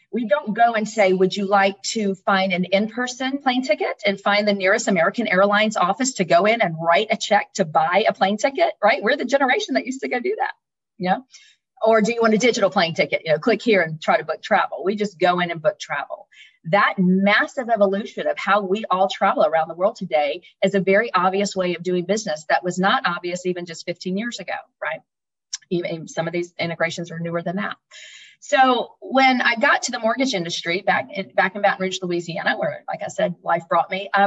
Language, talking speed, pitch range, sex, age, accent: English, 230 wpm, 180-220 Hz, female, 40-59, American